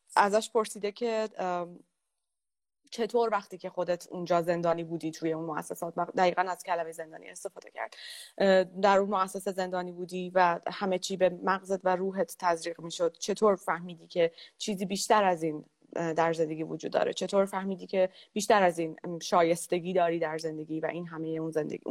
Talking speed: 165 wpm